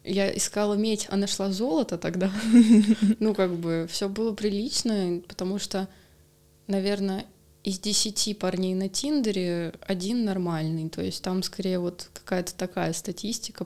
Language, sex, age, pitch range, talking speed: Russian, female, 20-39, 175-205 Hz, 135 wpm